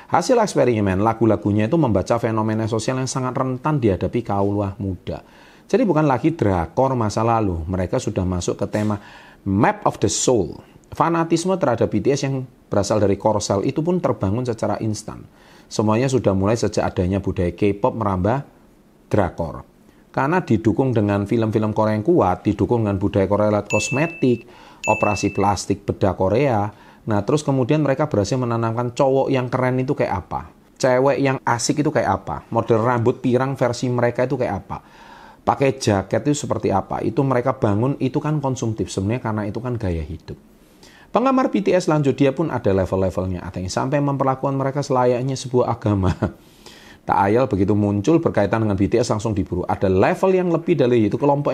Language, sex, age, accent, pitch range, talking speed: Indonesian, male, 40-59, native, 100-130 Hz, 160 wpm